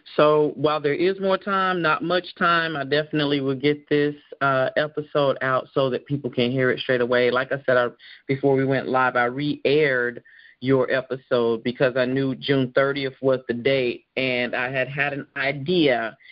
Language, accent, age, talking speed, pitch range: English, American, 30-49, 185 wpm, 130-155 Hz